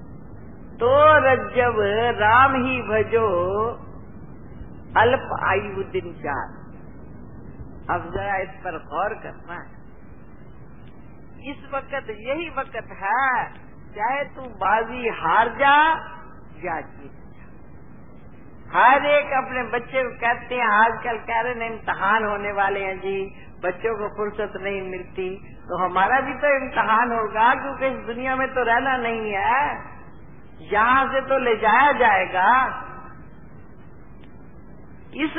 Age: 50-69